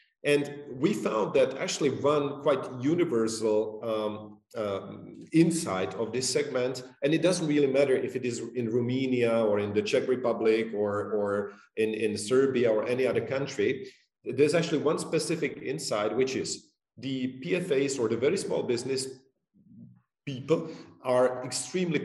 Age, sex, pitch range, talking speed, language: 40-59, male, 115-155 Hz, 145 wpm, Romanian